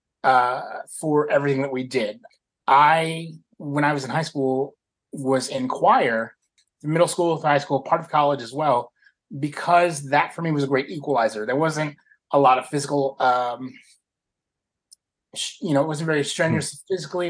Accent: American